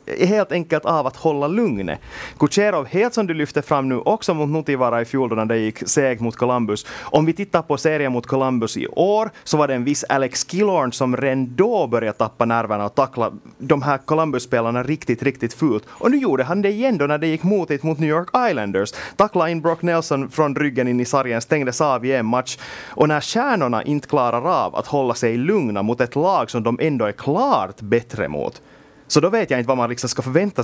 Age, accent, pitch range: 30-49, Finnish, 115-155 Hz